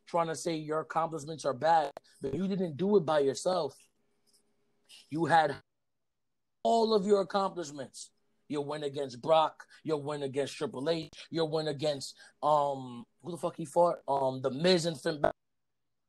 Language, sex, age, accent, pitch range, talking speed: English, male, 20-39, American, 150-200 Hz, 160 wpm